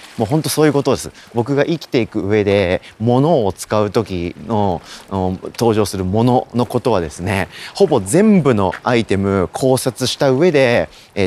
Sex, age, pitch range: male, 40-59, 95-135 Hz